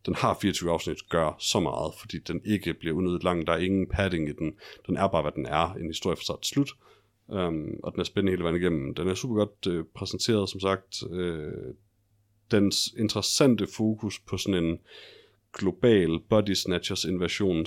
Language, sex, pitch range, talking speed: Danish, male, 90-110 Hz, 190 wpm